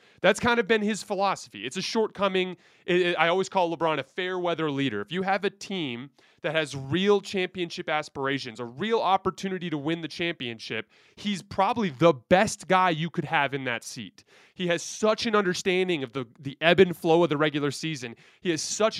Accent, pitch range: American, 140-190 Hz